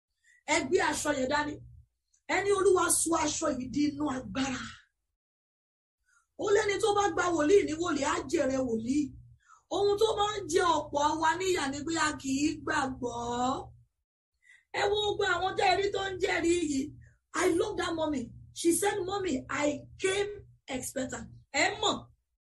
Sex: female